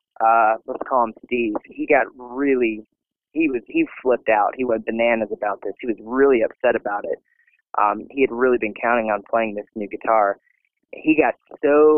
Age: 30-49